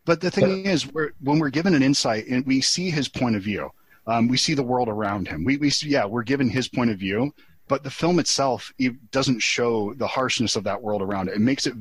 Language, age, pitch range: English, 30-49, 105-125 Hz